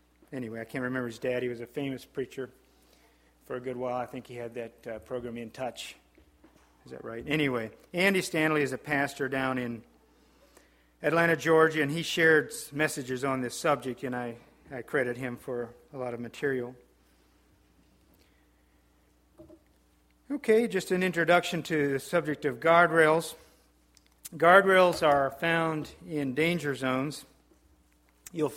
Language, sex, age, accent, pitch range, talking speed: English, male, 50-69, American, 115-160 Hz, 145 wpm